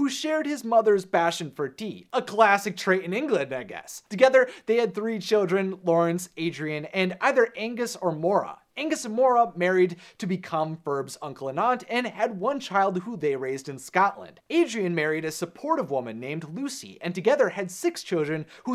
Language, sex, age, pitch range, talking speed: English, male, 30-49, 170-225 Hz, 190 wpm